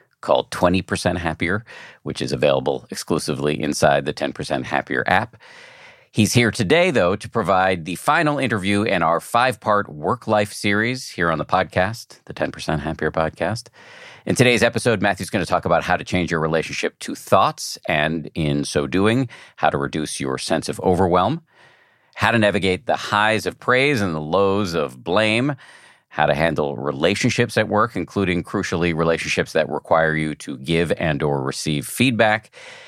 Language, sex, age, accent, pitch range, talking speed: English, male, 50-69, American, 80-120 Hz, 165 wpm